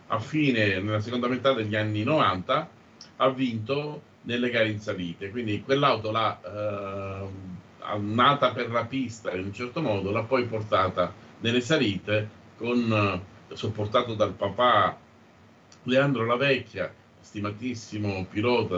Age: 50-69